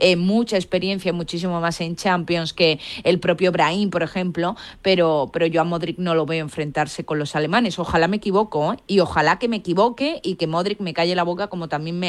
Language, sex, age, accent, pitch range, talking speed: Spanish, female, 20-39, Spanish, 155-180 Hz, 220 wpm